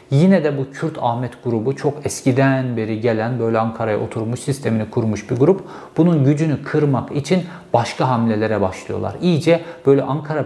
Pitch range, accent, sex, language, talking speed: 120-160 Hz, native, male, Turkish, 155 wpm